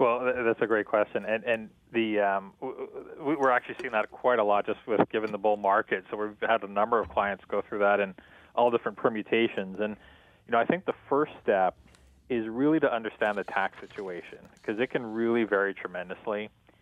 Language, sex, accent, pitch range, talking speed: English, male, American, 100-120 Hz, 205 wpm